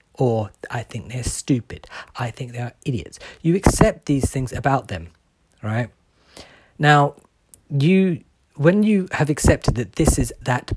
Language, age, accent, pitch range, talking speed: English, 40-59, British, 110-140 Hz, 150 wpm